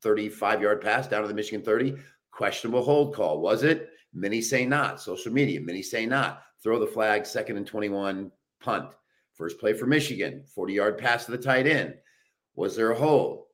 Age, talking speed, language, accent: 50-69, 180 wpm, English, American